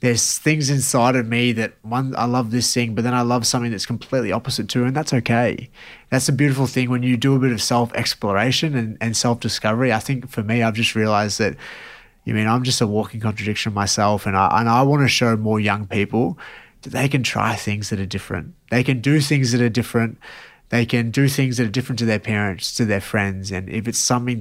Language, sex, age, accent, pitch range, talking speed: English, male, 20-39, Australian, 105-125 Hz, 235 wpm